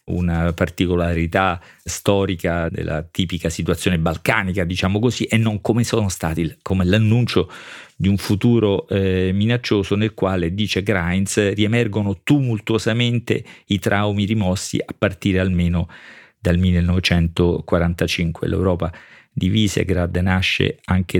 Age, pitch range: 40-59, 85-105 Hz